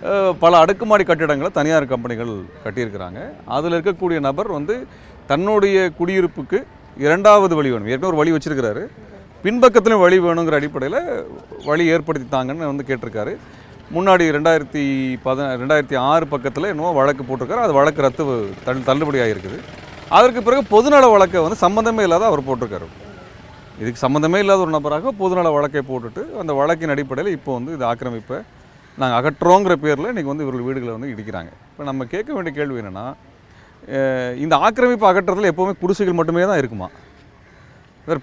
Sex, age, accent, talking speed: male, 30-49, native, 140 wpm